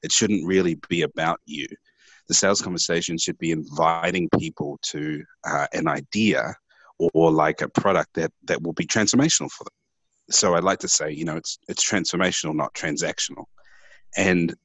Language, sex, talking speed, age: English, male, 170 wpm, 30-49